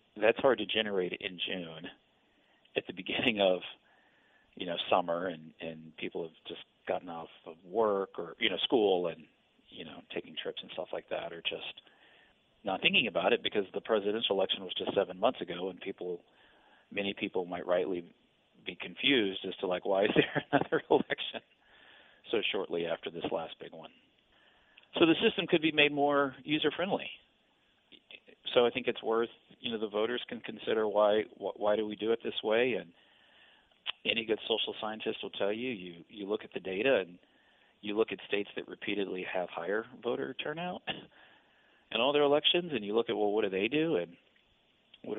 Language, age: English, 40-59